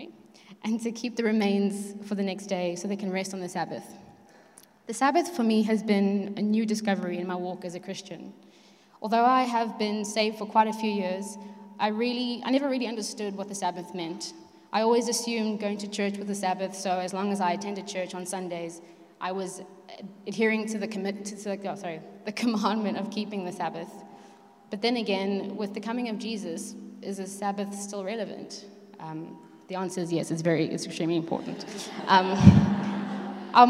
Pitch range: 190-225 Hz